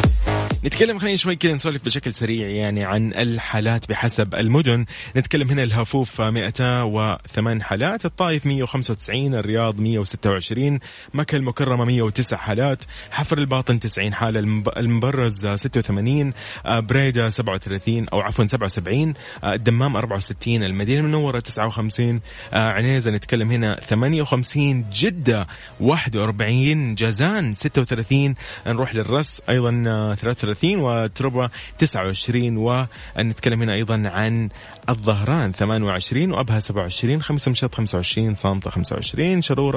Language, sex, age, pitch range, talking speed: English, male, 30-49, 105-135 Hz, 110 wpm